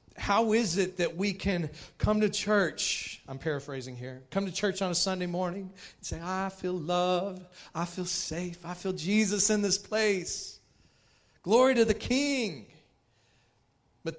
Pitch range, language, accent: 125-190 Hz, English, American